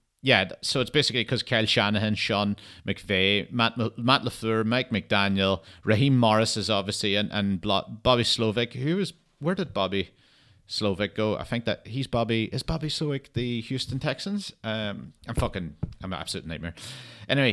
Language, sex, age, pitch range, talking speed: English, male, 30-49, 100-130 Hz, 165 wpm